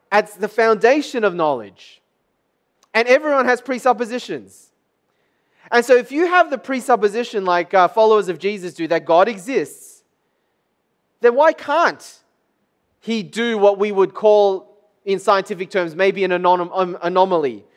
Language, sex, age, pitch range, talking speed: English, male, 30-49, 185-245 Hz, 140 wpm